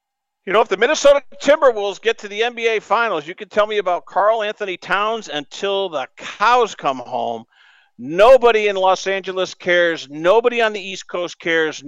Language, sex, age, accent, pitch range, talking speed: English, male, 50-69, American, 165-230 Hz, 175 wpm